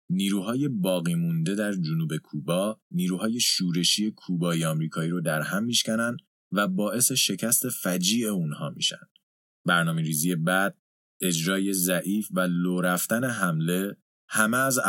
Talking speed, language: 120 wpm, Persian